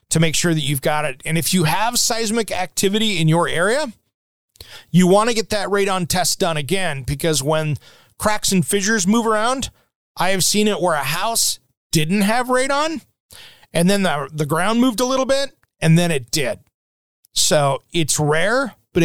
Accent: American